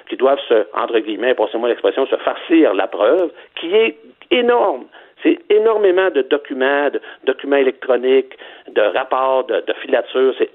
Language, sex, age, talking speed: French, male, 60-79, 155 wpm